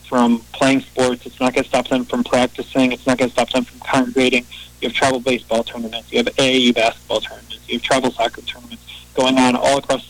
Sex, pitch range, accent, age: male, 120-135 Hz, American, 20-39